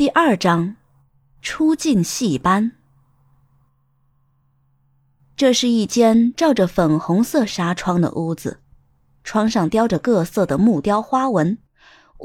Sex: female